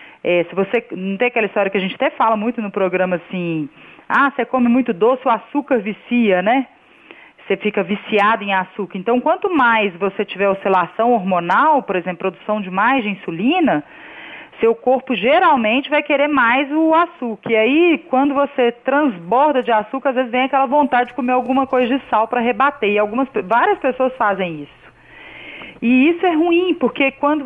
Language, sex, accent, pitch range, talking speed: Portuguese, female, Brazilian, 205-275 Hz, 185 wpm